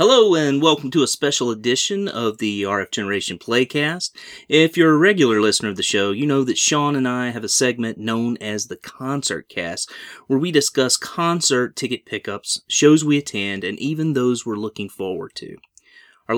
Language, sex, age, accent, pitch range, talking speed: English, male, 30-49, American, 105-145 Hz, 185 wpm